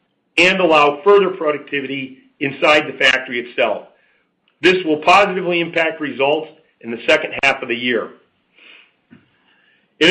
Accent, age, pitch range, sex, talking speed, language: American, 50-69, 140-175 Hz, male, 125 wpm, English